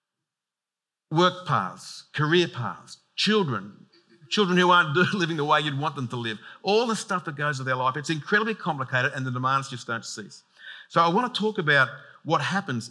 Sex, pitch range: male, 125-170 Hz